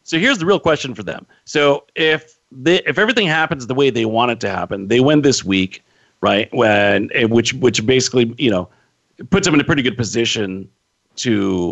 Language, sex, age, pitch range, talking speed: English, male, 40-59, 105-140 Hz, 200 wpm